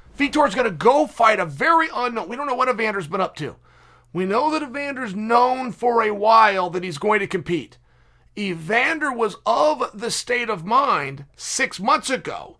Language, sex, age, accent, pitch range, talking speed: English, male, 40-59, American, 170-250 Hz, 185 wpm